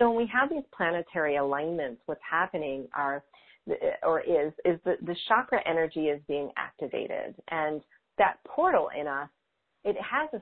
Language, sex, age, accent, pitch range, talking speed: English, female, 40-59, American, 140-205 Hz, 160 wpm